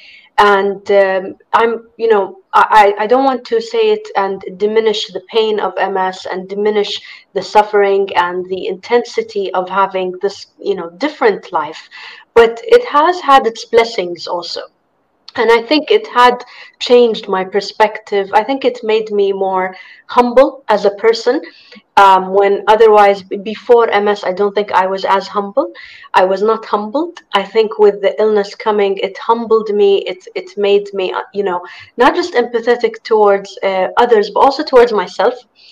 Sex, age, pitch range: female, 30-49, 200-335 Hz